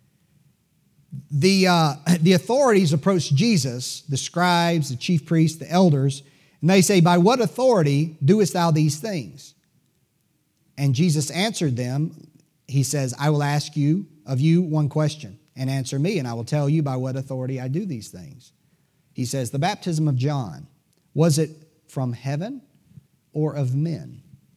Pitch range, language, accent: 145-190 Hz, English, American